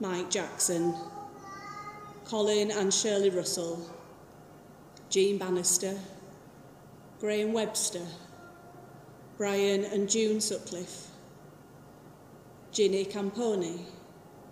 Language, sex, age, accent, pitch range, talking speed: English, female, 30-49, British, 180-215 Hz, 65 wpm